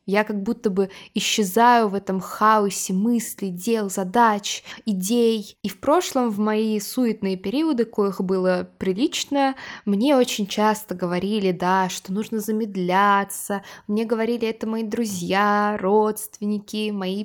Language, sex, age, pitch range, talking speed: Russian, female, 20-39, 190-240 Hz, 130 wpm